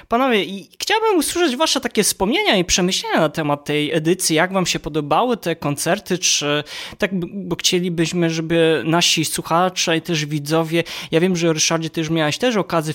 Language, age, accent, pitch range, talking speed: Polish, 20-39, native, 150-185 Hz, 170 wpm